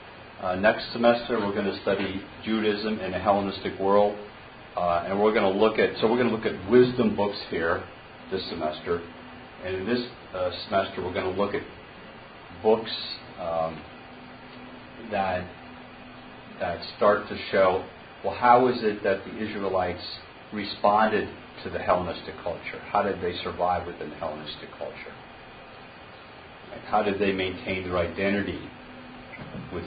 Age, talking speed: 40-59, 150 wpm